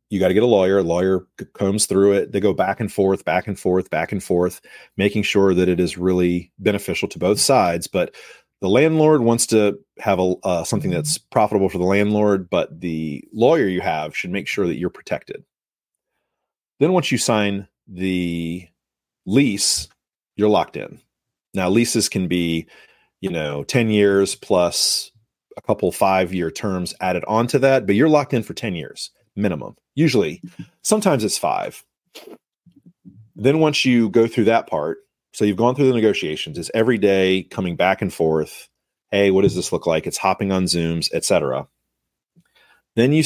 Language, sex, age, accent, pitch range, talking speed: English, male, 30-49, American, 90-115 Hz, 175 wpm